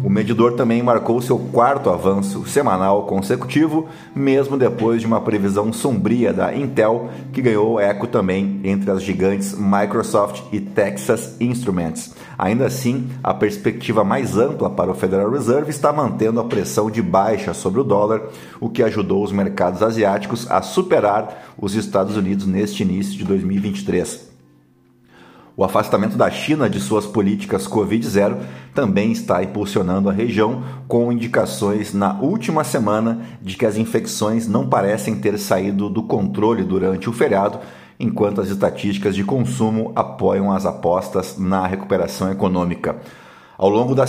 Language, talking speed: Portuguese, 145 wpm